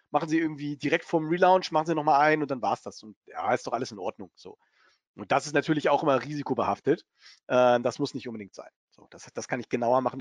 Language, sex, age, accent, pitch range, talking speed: German, male, 40-59, German, 125-165 Hz, 255 wpm